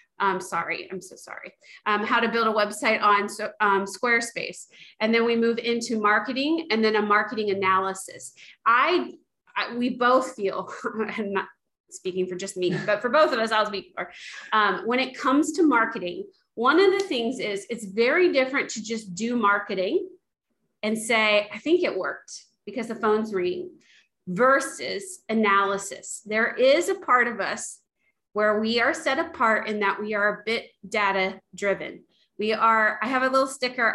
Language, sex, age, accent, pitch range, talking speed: English, female, 30-49, American, 200-260 Hz, 175 wpm